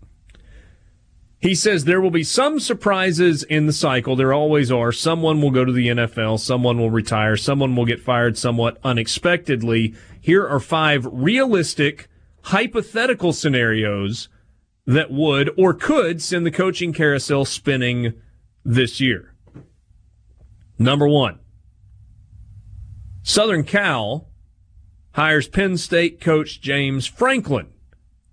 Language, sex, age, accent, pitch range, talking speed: English, male, 40-59, American, 105-155 Hz, 115 wpm